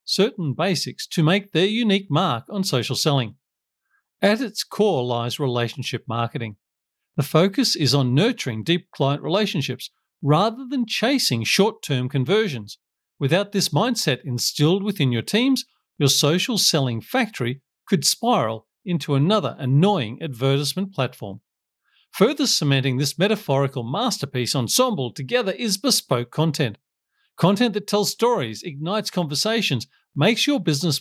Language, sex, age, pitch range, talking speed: English, male, 50-69, 130-205 Hz, 130 wpm